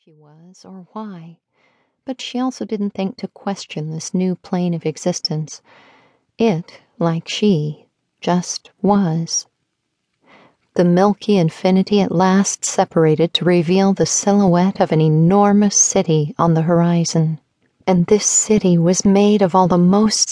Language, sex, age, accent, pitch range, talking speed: English, female, 40-59, American, 170-200 Hz, 140 wpm